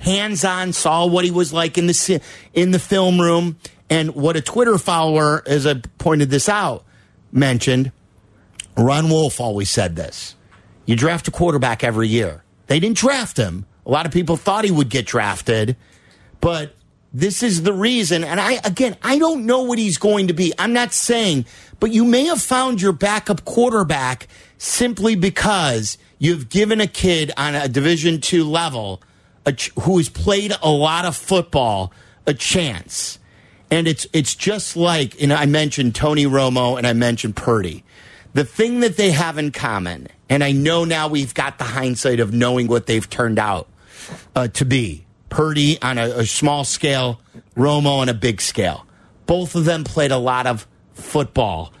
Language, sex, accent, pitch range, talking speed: English, male, American, 120-180 Hz, 175 wpm